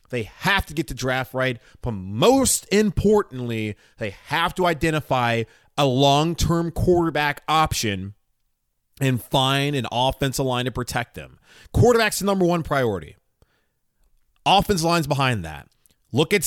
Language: English